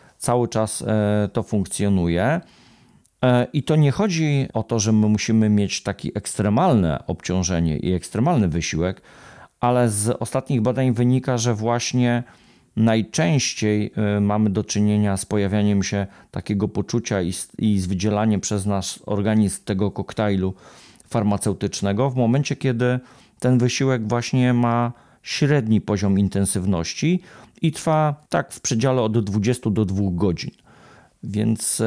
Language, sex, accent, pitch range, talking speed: Polish, male, native, 100-120 Hz, 125 wpm